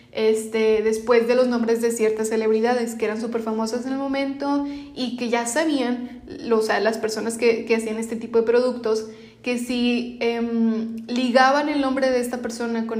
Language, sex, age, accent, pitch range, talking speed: Spanish, female, 20-39, Mexican, 230-255 Hz, 190 wpm